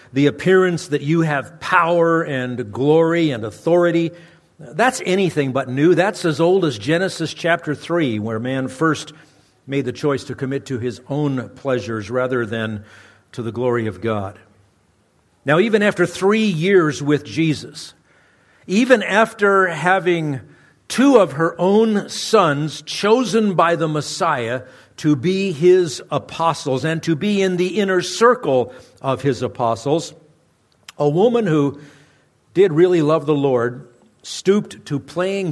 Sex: male